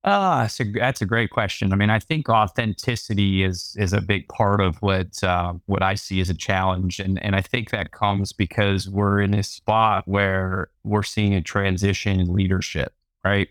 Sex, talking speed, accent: male, 195 wpm, American